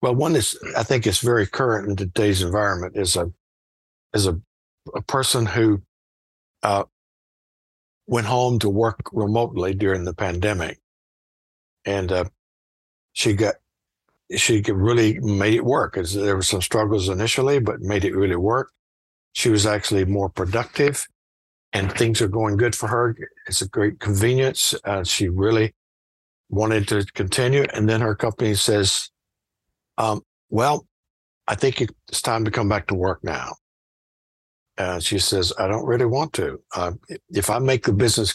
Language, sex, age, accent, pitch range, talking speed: English, male, 60-79, American, 95-115 Hz, 155 wpm